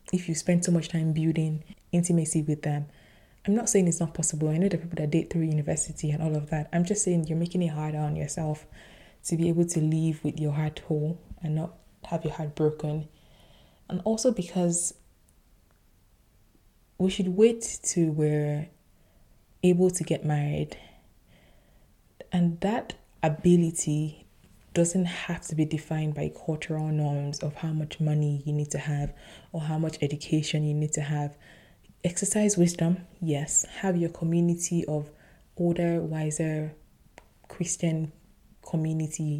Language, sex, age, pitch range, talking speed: English, female, 20-39, 150-170 Hz, 155 wpm